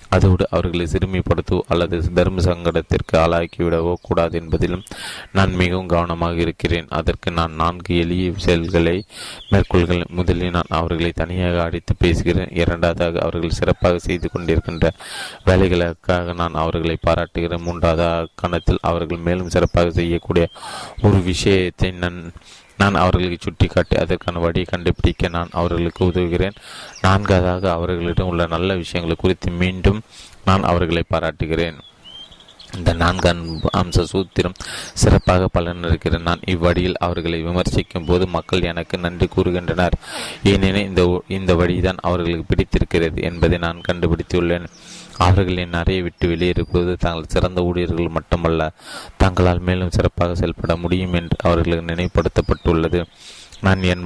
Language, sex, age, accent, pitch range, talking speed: Tamil, male, 30-49, native, 85-90 Hz, 115 wpm